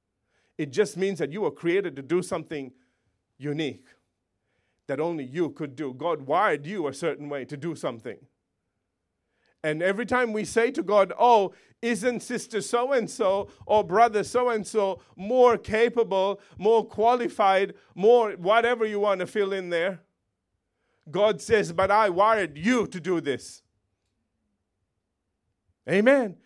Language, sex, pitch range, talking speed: English, male, 160-235 Hz, 140 wpm